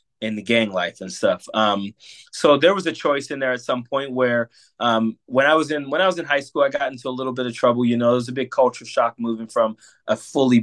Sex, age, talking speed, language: male, 20-39, 275 wpm, English